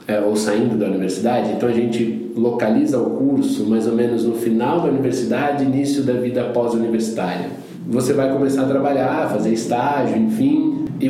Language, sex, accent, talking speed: Portuguese, male, Brazilian, 170 wpm